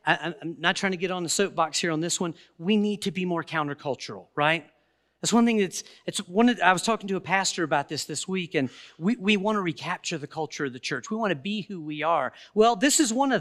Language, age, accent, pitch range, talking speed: English, 40-59, American, 160-220 Hz, 265 wpm